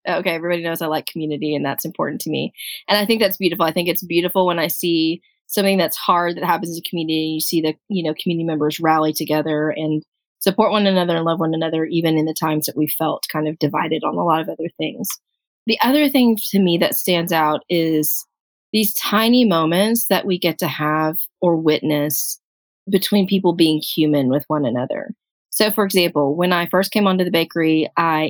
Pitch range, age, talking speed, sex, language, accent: 155-190 Hz, 20-39, 215 wpm, female, English, American